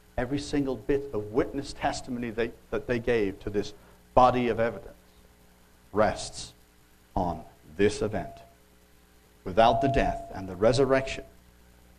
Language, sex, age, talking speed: English, male, 60-79, 120 wpm